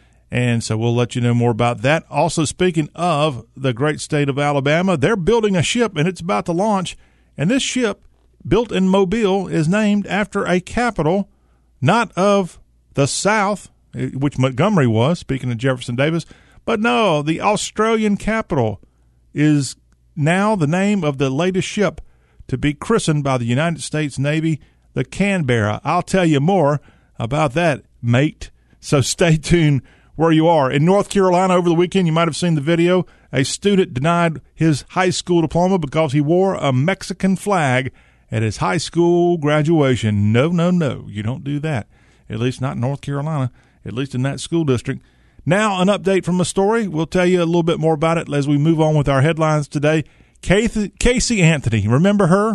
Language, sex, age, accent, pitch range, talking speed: English, male, 40-59, American, 130-180 Hz, 185 wpm